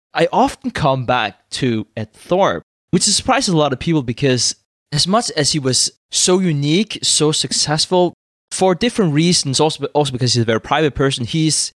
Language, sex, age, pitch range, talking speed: English, male, 20-39, 125-175 Hz, 175 wpm